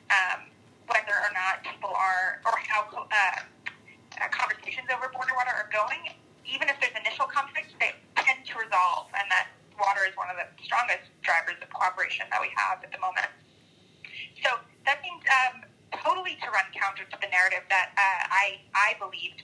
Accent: American